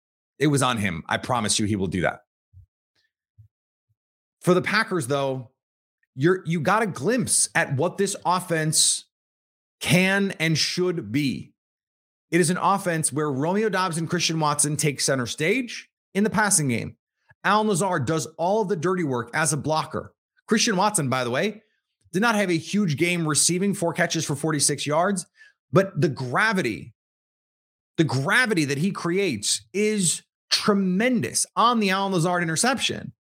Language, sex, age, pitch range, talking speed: English, male, 30-49, 130-185 Hz, 160 wpm